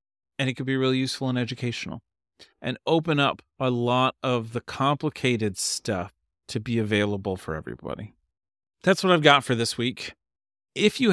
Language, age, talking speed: English, 40-59, 165 wpm